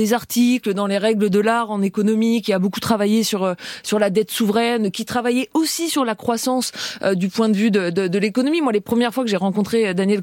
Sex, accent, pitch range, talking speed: female, French, 195-240 Hz, 240 wpm